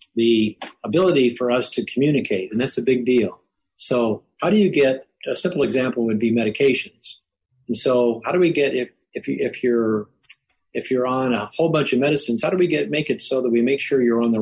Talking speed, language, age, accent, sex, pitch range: 230 wpm, English, 50-69, American, male, 115-140 Hz